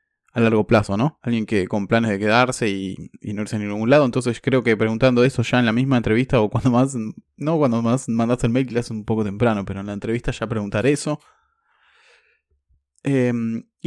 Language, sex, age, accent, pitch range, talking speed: Spanish, male, 20-39, Argentinian, 110-130 Hz, 215 wpm